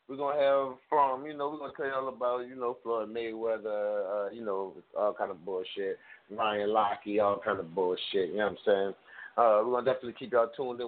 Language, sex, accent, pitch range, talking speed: English, male, American, 125-170 Hz, 250 wpm